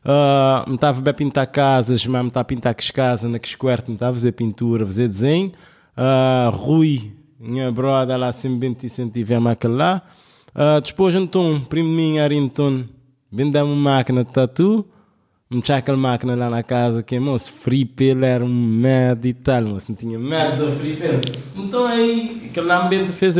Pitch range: 125-160 Hz